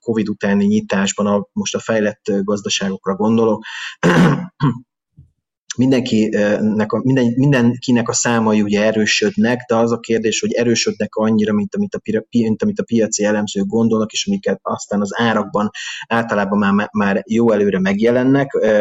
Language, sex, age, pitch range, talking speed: Hungarian, male, 30-49, 105-125 Hz, 135 wpm